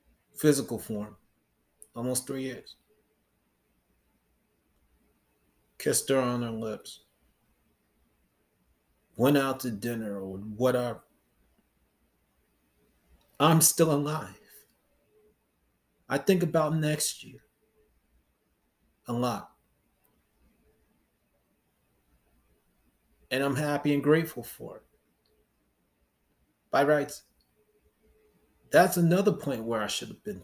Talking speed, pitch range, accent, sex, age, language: 85 wpm, 110-145 Hz, American, male, 30-49, English